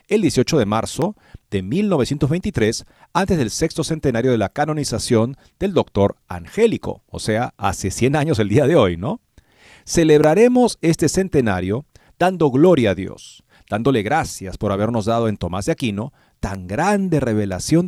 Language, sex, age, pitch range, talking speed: Spanish, male, 40-59, 110-160 Hz, 150 wpm